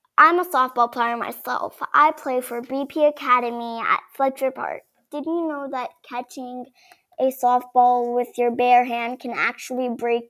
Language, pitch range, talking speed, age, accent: English, 245-300 Hz, 155 wpm, 10-29, American